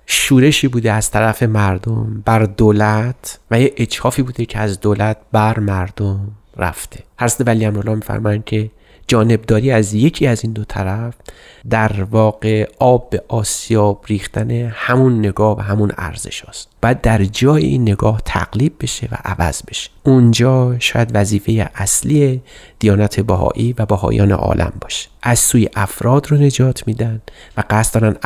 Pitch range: 105-125 Hz